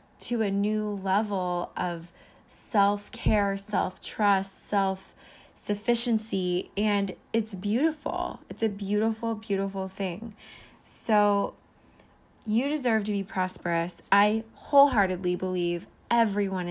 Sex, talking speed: female, 95 wpm